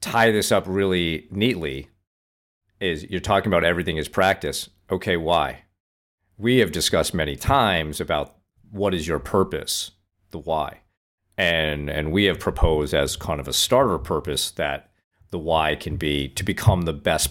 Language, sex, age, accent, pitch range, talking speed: English, male, 40-59, American, 75-100 Hz, 160 wpm